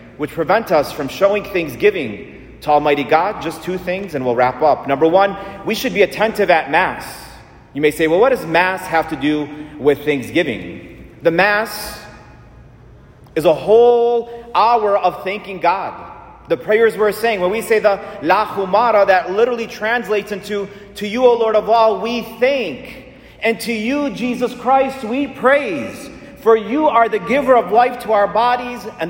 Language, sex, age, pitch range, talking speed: English, male, 40-59, 170-230 Hz, 175 wpm